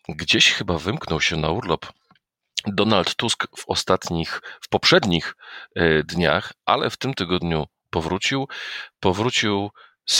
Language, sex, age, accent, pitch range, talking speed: Polish, male, 40-59, native, 80-90 Hz, 120 wpm